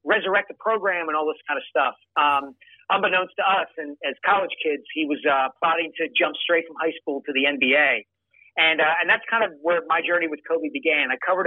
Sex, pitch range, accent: male, 150-195 Hz, American